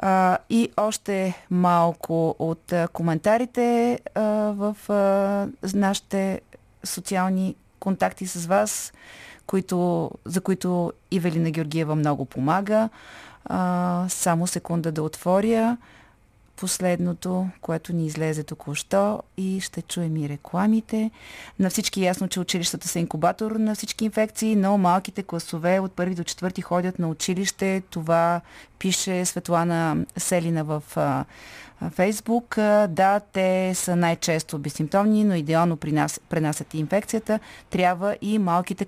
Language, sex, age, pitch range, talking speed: Bulgarian, female, 30-49, 165-195 Hz, 120 wpm